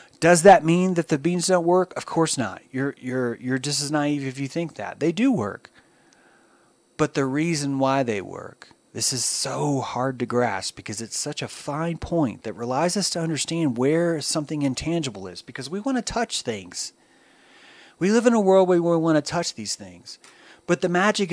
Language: English